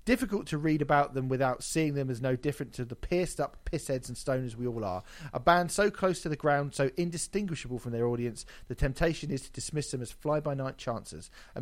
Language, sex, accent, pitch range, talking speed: English, male, British, 125-150 Hz, 220 wpm